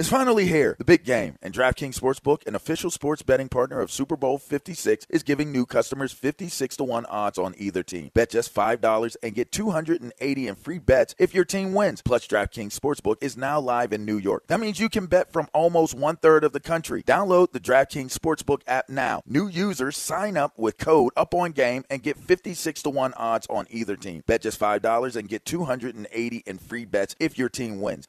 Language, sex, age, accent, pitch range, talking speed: English, male, 40-59, American, 115-165 Hz, 205 wpm